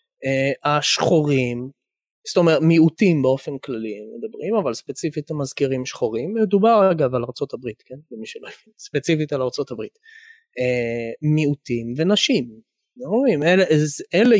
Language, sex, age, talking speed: English, male, 20-39, 140 wpm